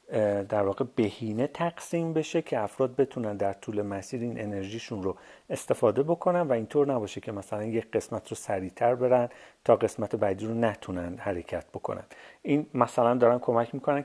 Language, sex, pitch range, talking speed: Persian, male, 110-140 Hz, 165 wpm